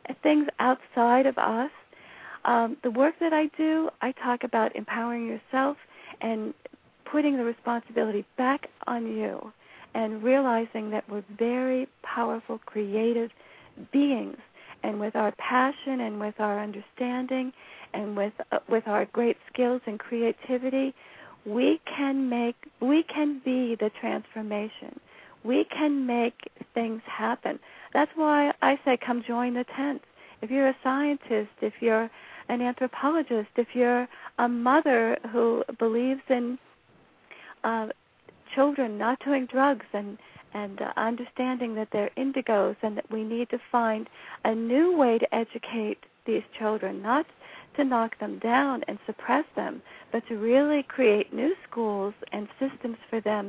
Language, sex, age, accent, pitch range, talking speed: English, female, 50-69, American, 225-265 Hz, 140 wpm